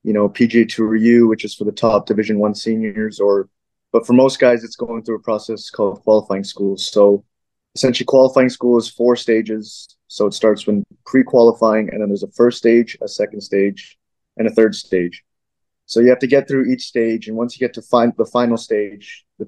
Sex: male